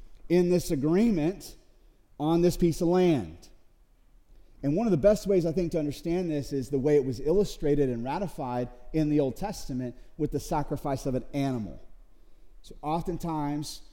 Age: 30-49